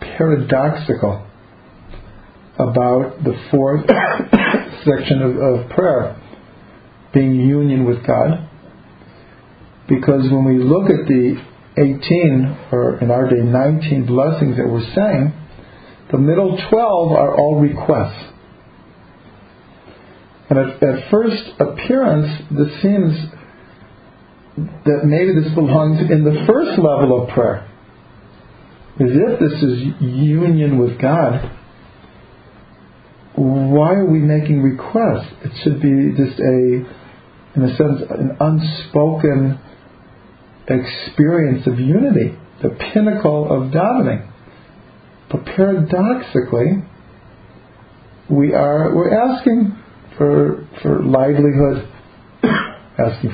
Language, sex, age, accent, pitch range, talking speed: English, male, 50-69, American, 125-155 Hz, 100 wpm